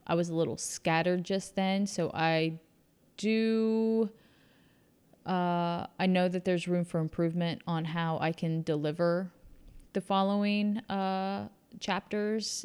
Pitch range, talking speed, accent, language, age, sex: 165-190 Hz, 130 wpm, American, English, 10-29, female